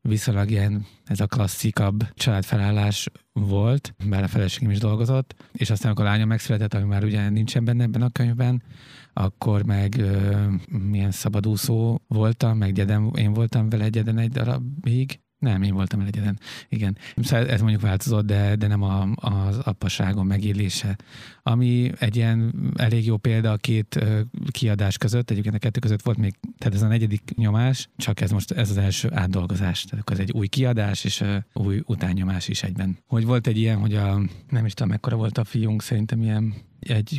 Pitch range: 105-120 Hz